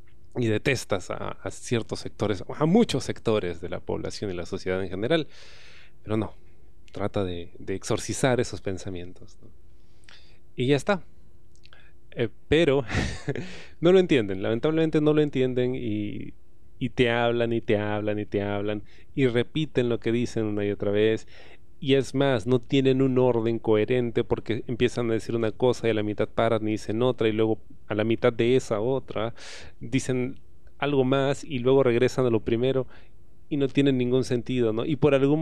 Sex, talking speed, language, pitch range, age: male, 180 wpm, Spanish, 105-130 Hz, 30-49